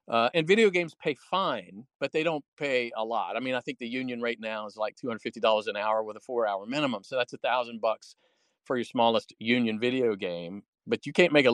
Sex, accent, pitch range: male, American, 115-145 Hz